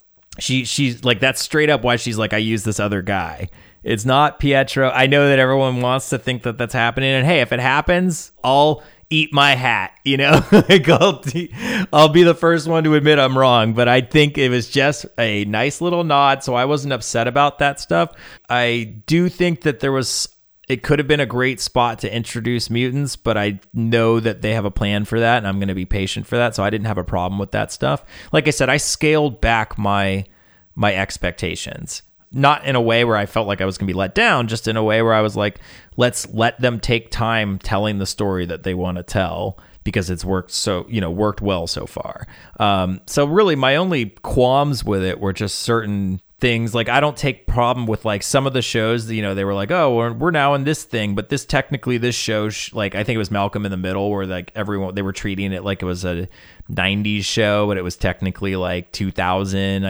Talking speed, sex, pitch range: 230 wpm, male, 100-135 Hz